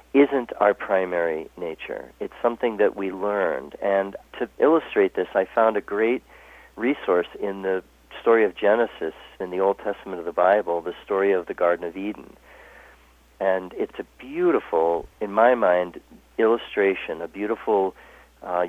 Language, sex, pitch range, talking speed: English, male, 95-120 Hz, 155 wpm